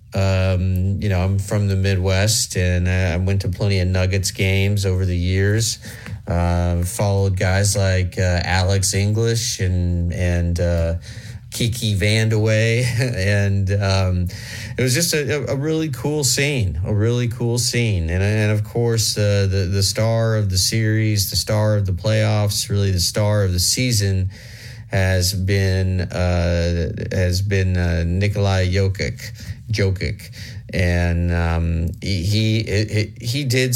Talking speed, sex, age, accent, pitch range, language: 145 wpm, male, 30-49, American, 95-110 Hz, English